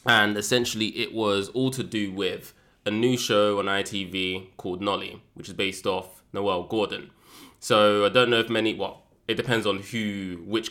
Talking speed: 185 wpm